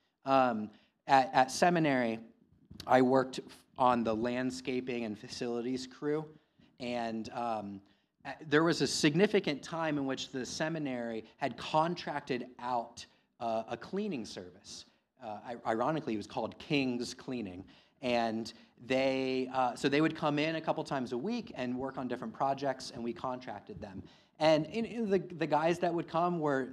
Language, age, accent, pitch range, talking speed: English, 30-49, American, 120-155 Hz, 160 wpm